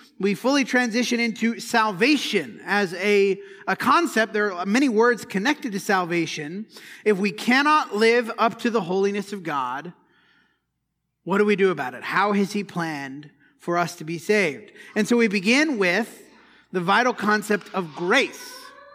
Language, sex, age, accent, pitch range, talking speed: English, male, 30-49, American, 185-250 Hz, 160 wpm